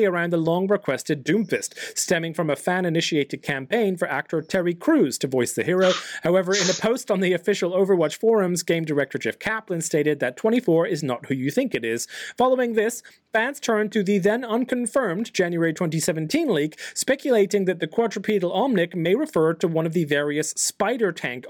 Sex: male